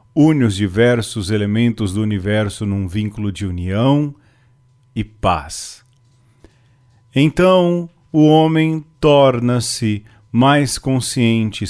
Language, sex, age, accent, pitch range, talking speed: Portuguese, male, 40-59, Brazilian, 105-130 Hz, 90 wpm